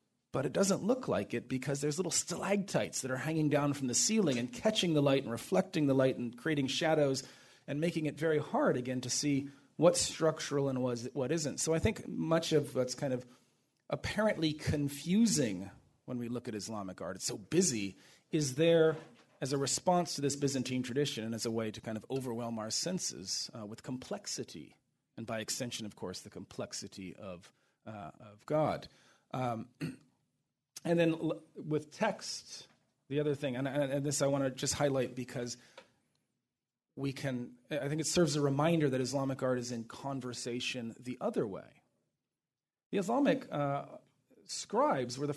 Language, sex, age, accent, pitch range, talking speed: English, male, 40-59, American, 125-160 Hz, 175 wpm